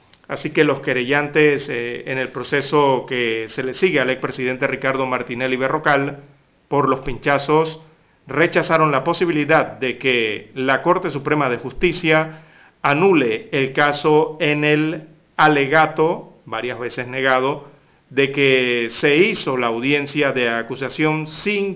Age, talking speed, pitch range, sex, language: 40-59, 135 wpm, 130-155 Hz, male, Spanish